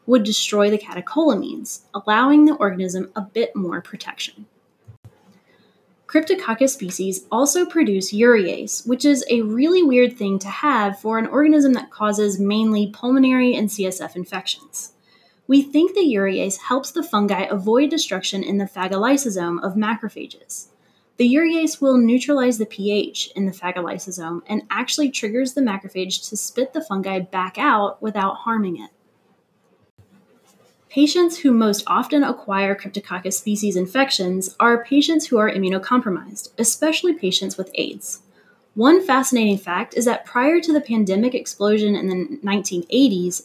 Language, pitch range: English, 195-260 Hz